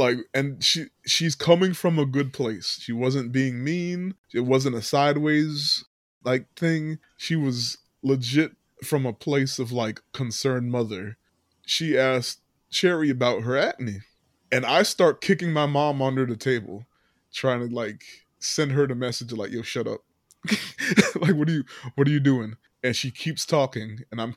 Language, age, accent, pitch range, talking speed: English, 20-39, American, 125-170 Hz, 170 wpm